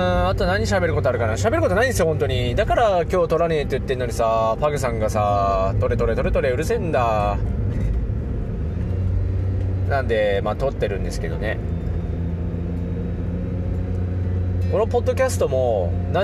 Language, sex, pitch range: Japanese, male, 90-100 Hz